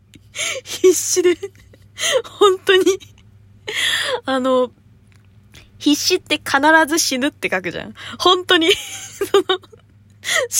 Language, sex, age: Japanese, female, 20-39